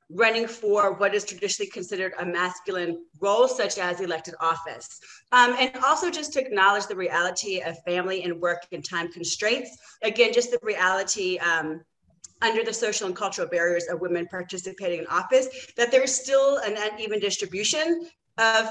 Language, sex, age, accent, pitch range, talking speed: English, female, 30-49, American, 190-260 Hz, 165 wpm